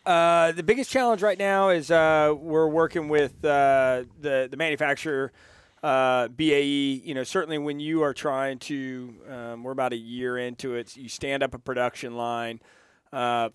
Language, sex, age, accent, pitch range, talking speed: English, male, 30-49, American, 115-135 Hz, 175 wpm